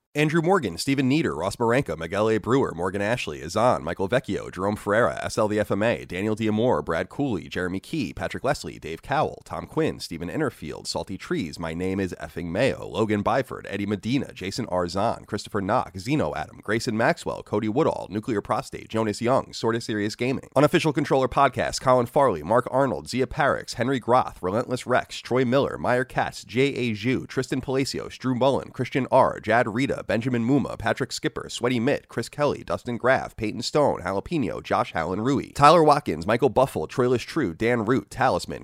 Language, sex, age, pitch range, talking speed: English, male, 30-49, 105-135 Hz, 180 wpm